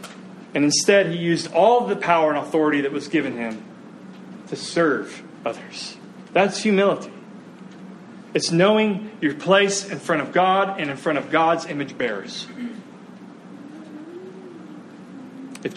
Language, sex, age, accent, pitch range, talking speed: English, male, 30-49, American, 155-195 Hz, 130 wpm